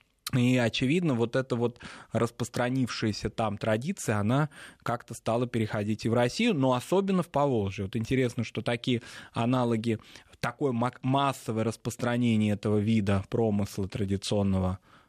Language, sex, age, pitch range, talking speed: Russian, male, 20-39, 110-135 Hz, 125 wpm